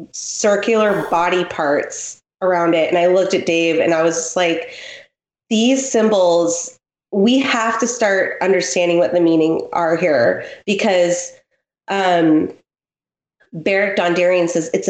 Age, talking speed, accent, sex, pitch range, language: 20-39, 135 wpm, American, female, 175-210 Hz, English